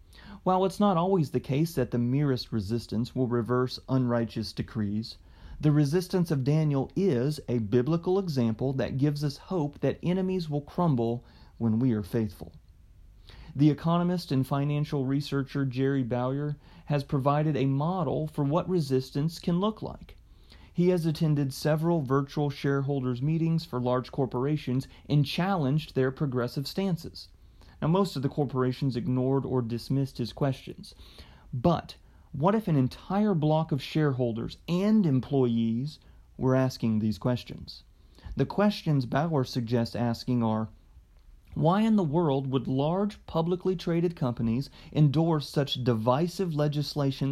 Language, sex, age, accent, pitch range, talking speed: English, male, 30-49, American, 125-160 Hz, 140 wpm